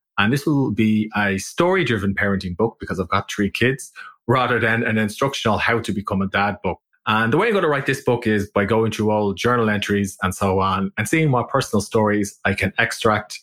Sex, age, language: male, 20-39, English